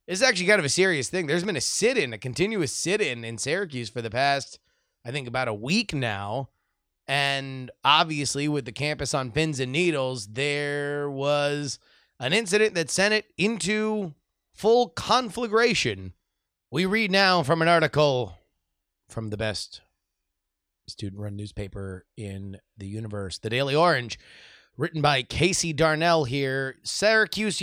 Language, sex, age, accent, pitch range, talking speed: English, male, 30-49, American, 115-170 Hz, 150 wpm